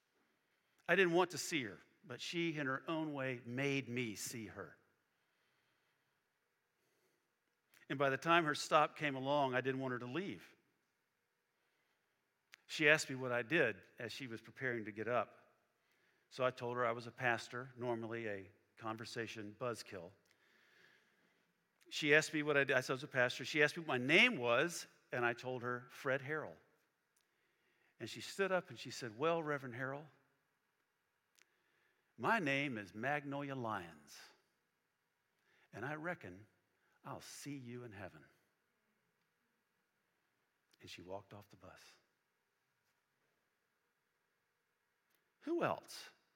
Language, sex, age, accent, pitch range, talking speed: English, male, 50-69, American, 115-145 Hz, 145 wpm